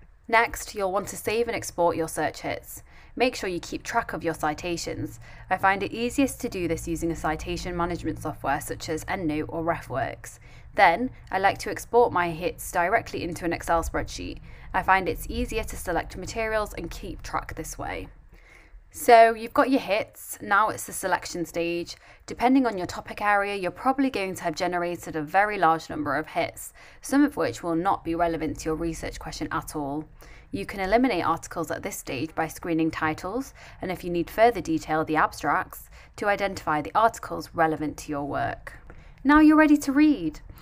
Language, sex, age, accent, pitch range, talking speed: English, female, 20-39, British, 160-230 Hz, 190 wpm